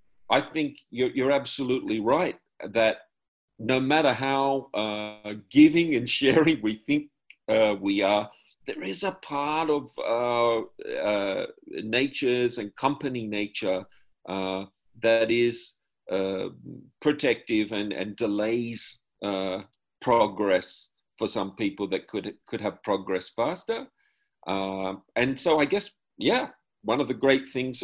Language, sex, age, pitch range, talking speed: English, male, 50-69, 100-140 Hz, 130 wpm